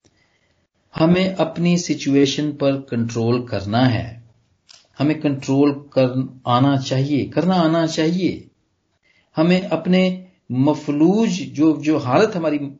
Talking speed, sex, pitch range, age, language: 105 wpm, male, 130-185 Hz, 40-59, Punjabi